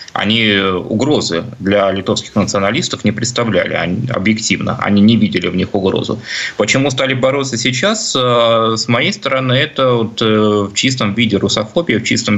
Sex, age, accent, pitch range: male, 20-39, native, 100-120 Hz